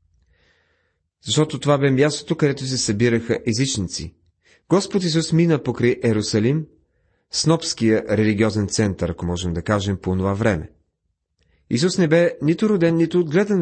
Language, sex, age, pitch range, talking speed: Bulgarian, male, 30-49, 110-155 Hz, 130 wpm